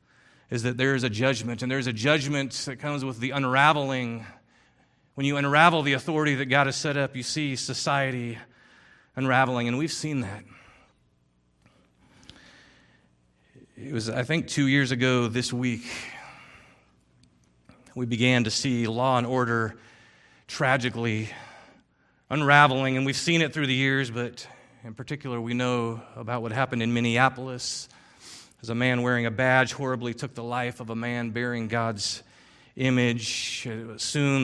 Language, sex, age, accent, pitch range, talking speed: English, male, 40-59, American, 120-140 Hz, 150 wpm